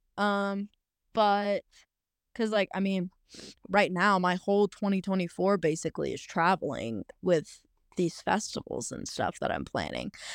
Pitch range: 190-240 Hz